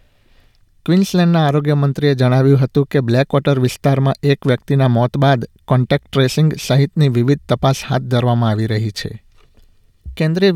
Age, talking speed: 60-79, 125 wpm